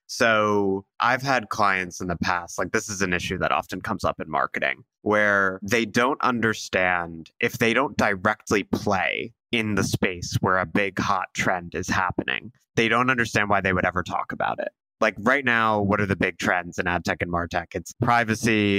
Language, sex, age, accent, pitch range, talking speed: English, male, 20-39, American, 95-115 Hz, 200 wpm